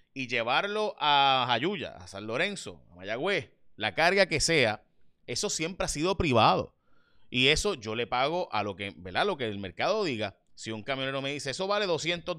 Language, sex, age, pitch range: Spanish, male, 30-49, 110-175 Hz